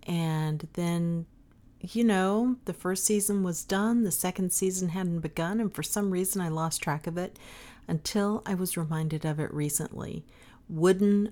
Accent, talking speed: American, 165 wpm